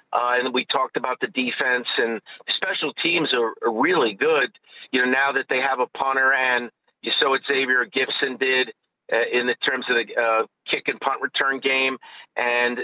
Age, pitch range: 50-69, 125-170 Hz